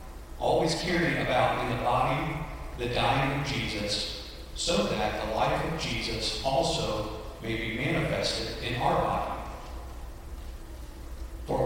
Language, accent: English, American